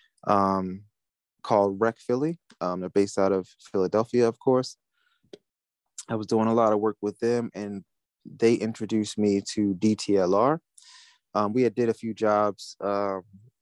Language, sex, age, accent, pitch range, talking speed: English, male, 20-39, American, 100-115 Hz, 155 wpm